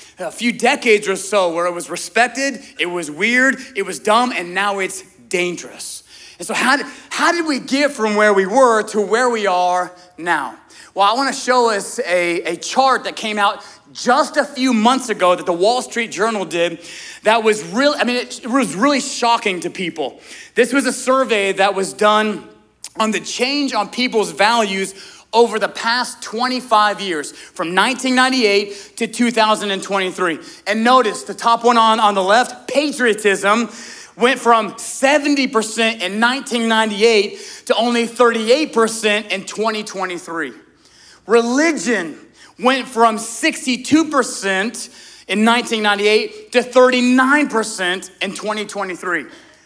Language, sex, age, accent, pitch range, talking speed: English, male, 30-49, American, 195-250 Hz, 145 wpm